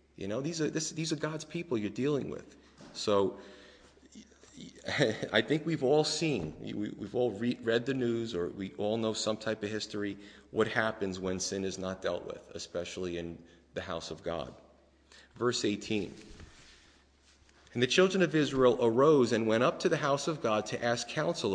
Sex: male